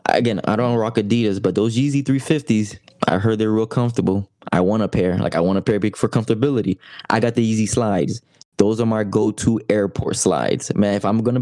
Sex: male